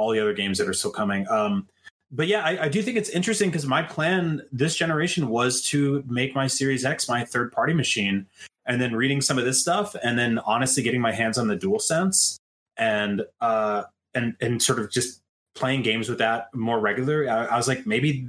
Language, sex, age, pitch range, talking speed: English, male, 30-49, 115-145 Hz, 215 wpm